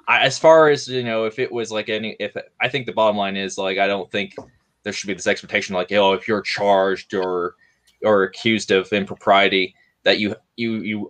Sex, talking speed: male, 215 wpm